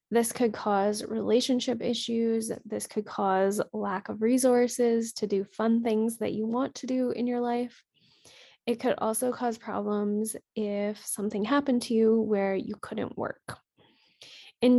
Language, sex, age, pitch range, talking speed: English, female, 10-29, 210-240 Hz, 155 wpm